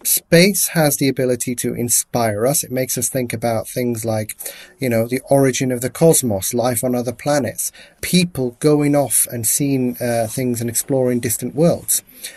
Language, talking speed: English, 175 wpm